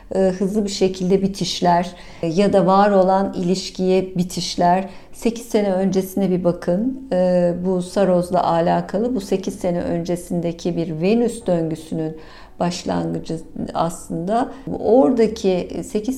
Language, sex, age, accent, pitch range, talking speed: Turkish, female, 50-69, native, 175-210 Hz, 110 wpm